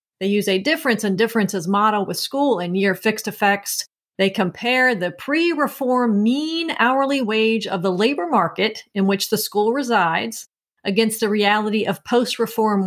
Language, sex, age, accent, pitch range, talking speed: English, female, 40-59, American, 195-250 Hz, 160 wpm